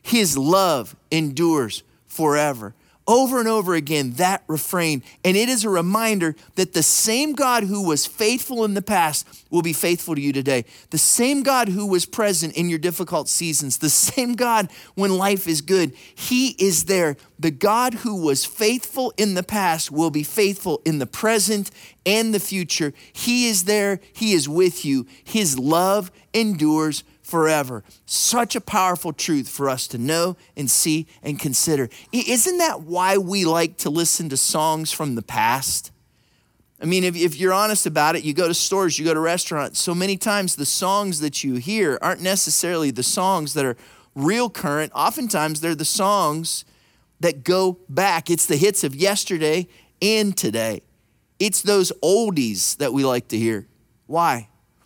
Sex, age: male, 30-49